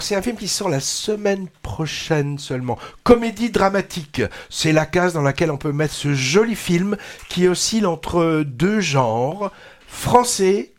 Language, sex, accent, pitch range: French, male, French, 145-190 Hz